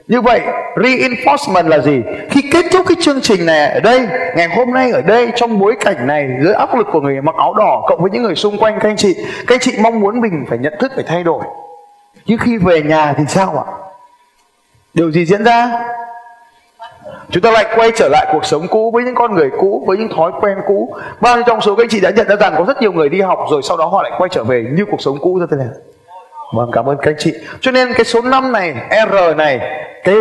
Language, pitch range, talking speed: Vietnamese, 165-245 Hz, 255 wpm